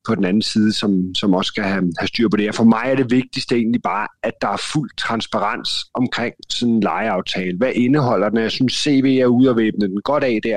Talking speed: 245 wpm